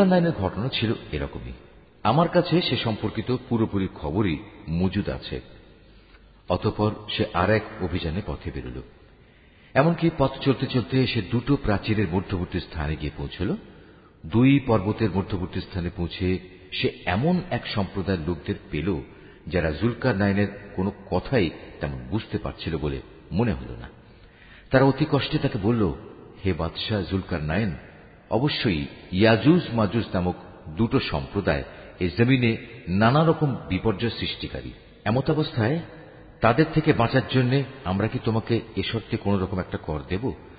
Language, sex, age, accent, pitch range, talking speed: Bengali, male, 50-69, native, 90-125 Hz, 130 wpm